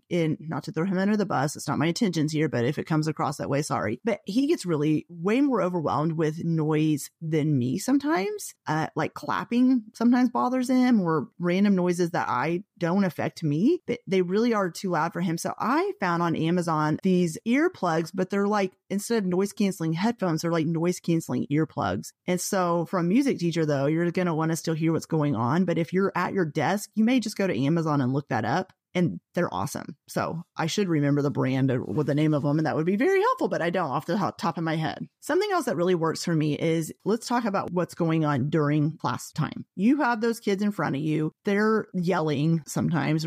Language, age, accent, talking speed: English, 30-49, American, 230 wpm